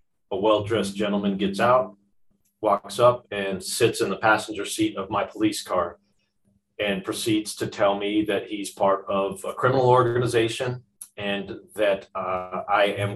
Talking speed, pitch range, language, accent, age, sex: 155 wpm, 100-130 Hz, English, American, 30-49, male